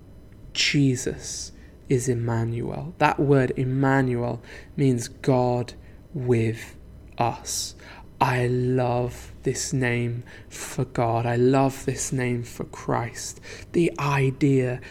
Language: English